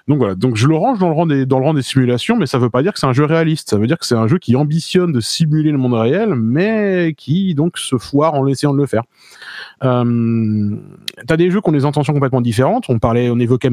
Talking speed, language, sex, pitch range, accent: 280 wpm, French, male, 125-170 Hz, French